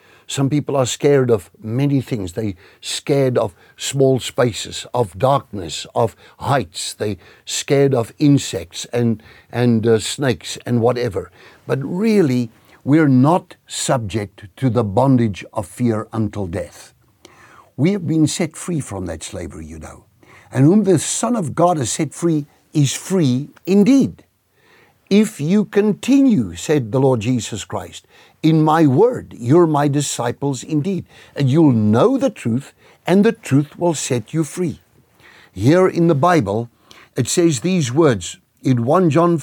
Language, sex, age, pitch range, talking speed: English, male, 60-79, 115-165 Hz, 150 wpm